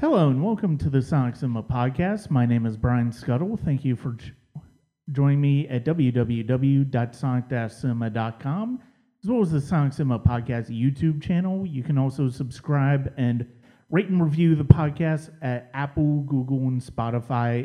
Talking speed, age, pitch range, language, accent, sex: 155 wpm, 30-49, 125-155 Hz, English, American, male